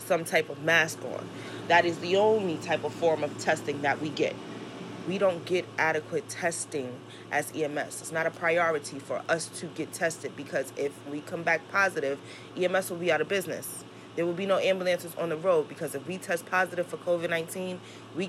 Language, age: English, 20-39